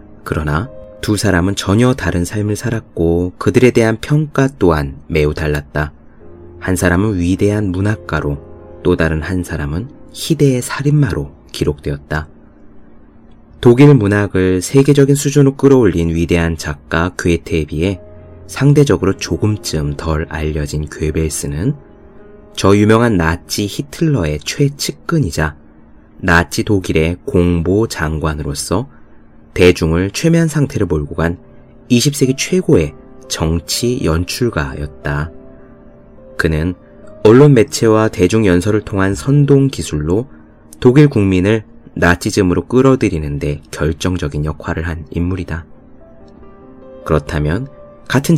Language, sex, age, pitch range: Korean, male, 30-49, 80-115 Hz